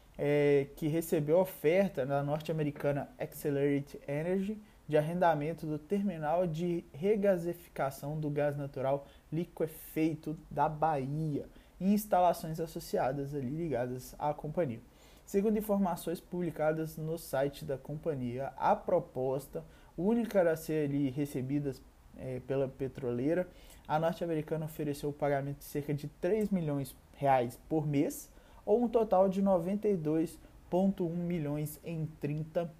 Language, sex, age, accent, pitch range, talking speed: Portuguese, male, 20-39, Brazilian, 140-170 Hz, 115 wpm